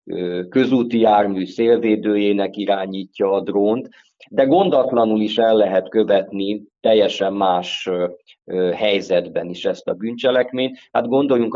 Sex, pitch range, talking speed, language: male, 95-115 Hz, 110 wpm, Hungarian